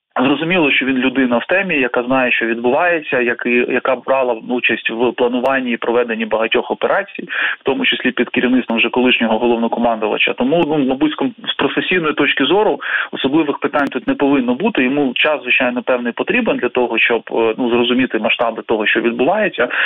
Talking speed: 170 wpm